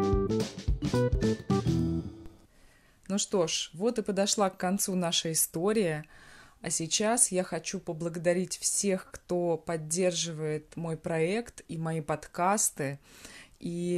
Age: 20-39